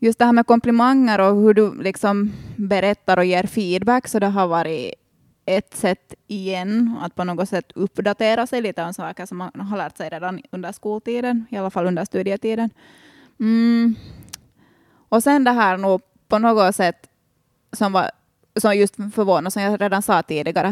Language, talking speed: Swedish, 175 wpm